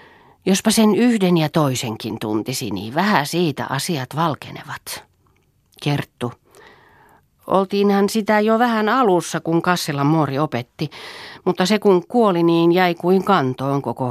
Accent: native